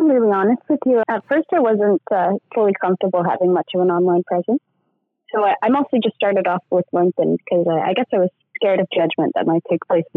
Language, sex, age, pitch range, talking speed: English, female, 20-39, 165-195 Hz, 235 wpm